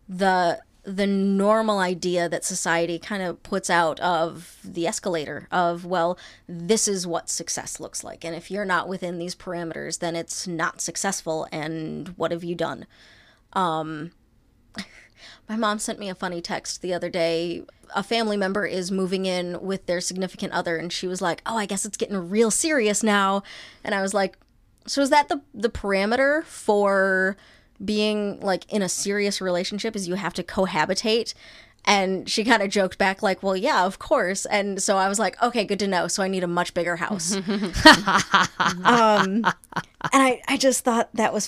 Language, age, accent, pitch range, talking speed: English, 20-39, American, 180-215 Hz, 185 wpm